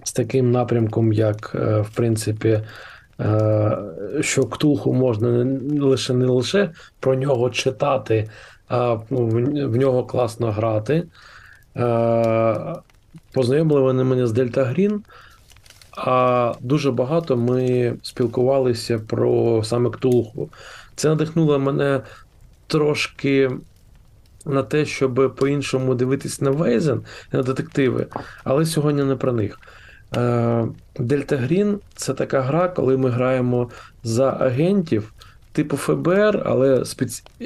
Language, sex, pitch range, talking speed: Ukrainian, male, 115-140 Hz, 105 wpm